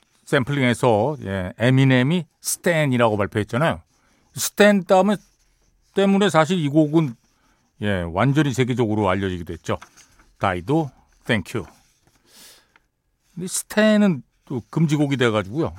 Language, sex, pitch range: Korean, male, 110-165 Hz